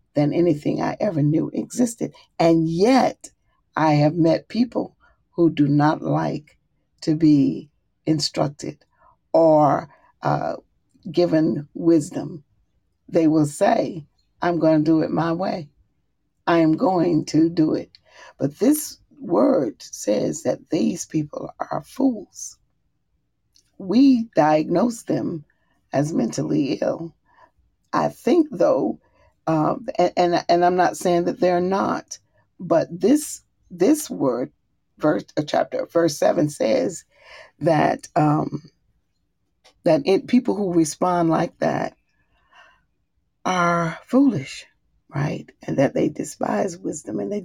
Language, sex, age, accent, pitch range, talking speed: English, female, 40-59, American, 155-200 Hz, 120 wpm